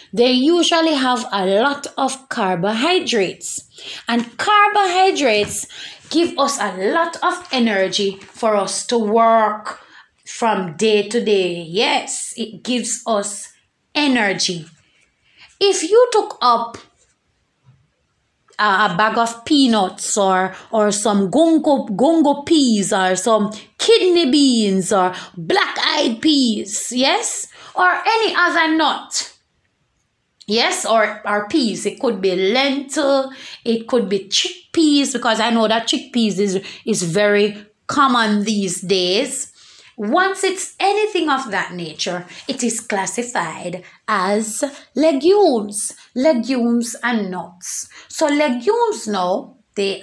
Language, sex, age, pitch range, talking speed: English, female, 20-39, 200-290 Hz, 115 wpm